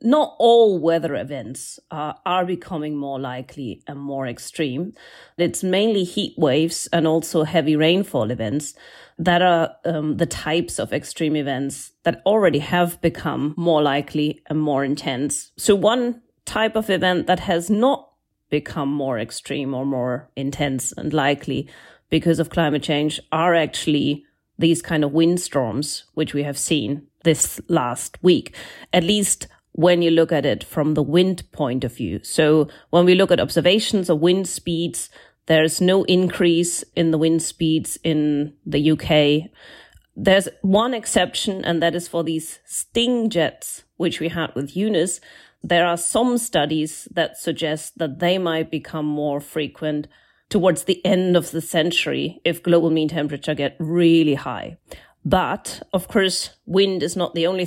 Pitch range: 150-180 Hz